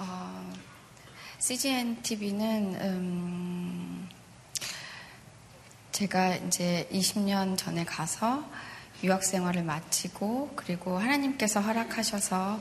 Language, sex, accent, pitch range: Korean, female, native, 185-220 Hz